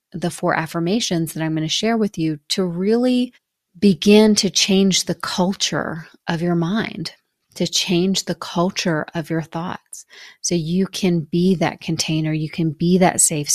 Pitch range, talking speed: 165-190 Hz, 170 wpm